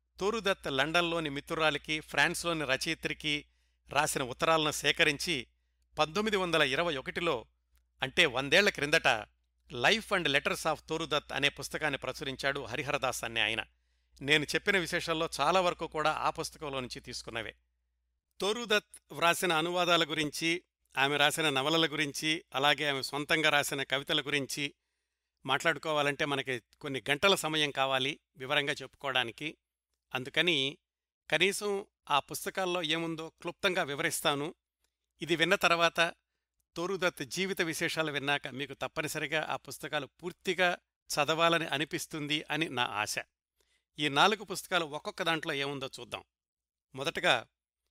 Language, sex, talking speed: Telugu, male, 115 wpm